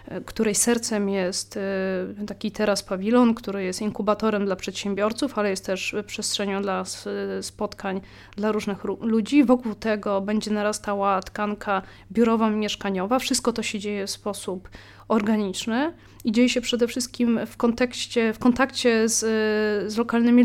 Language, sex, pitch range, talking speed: Polish, female, 200-235 Hz, 135 wpm